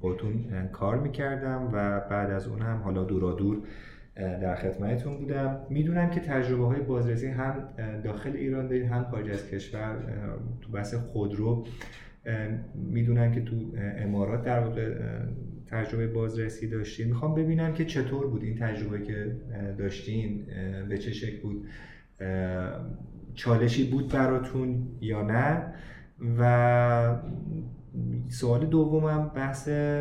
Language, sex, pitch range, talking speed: Persian, male, 105-125 Hz, 125 wpm